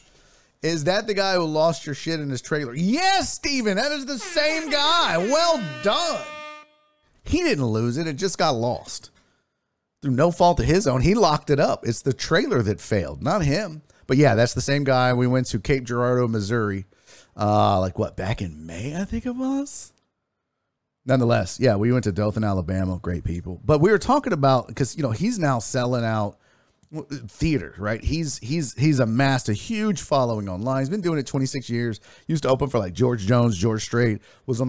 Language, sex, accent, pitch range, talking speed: English, male, American, 110-150 Hz, 200 wpm